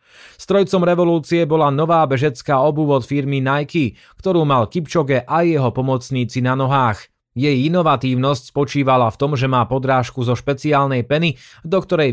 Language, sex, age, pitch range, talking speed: Slovak, male, 30-49, 125-155 Hz, 150 wpm